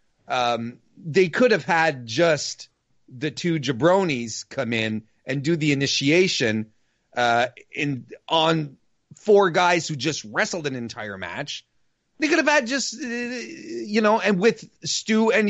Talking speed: 145 wpm